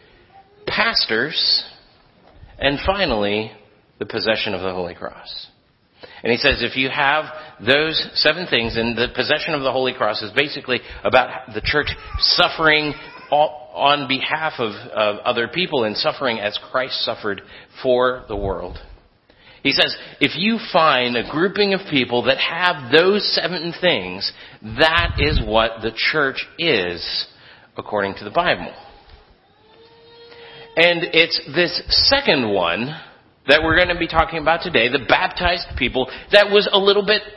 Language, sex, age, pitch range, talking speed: English, male, 40-59, 120-170 Hz, 145 wpm